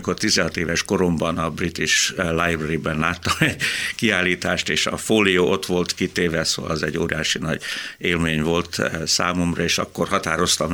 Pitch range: 90-120 Hz